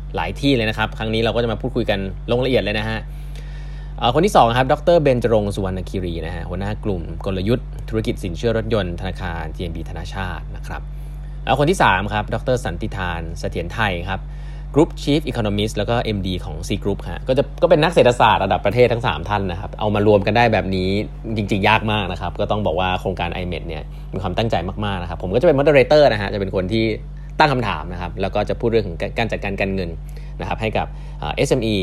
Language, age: Thai, 20-39